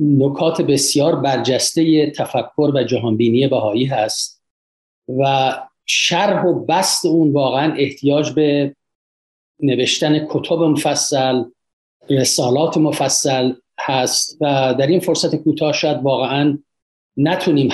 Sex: male